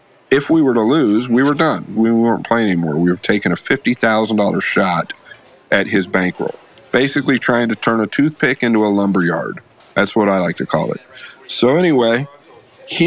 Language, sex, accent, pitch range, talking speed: English, male, American, 105-140 Hz, 185 wpm